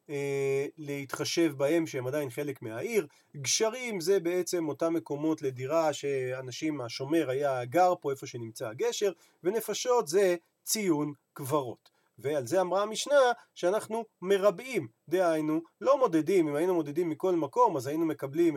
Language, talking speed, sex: Hebrew, 135 wpm, male